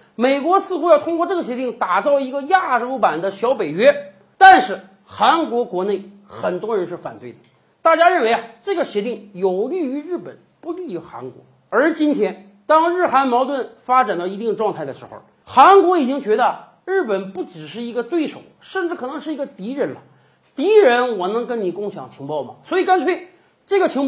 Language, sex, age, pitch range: Chinese, male, 50-69, 215-325 Hz